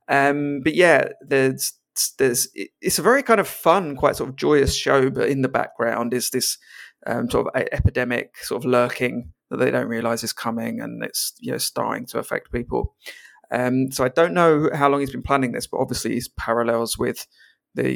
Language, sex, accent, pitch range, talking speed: English, male, British, 125-155 Hz, 205 wpm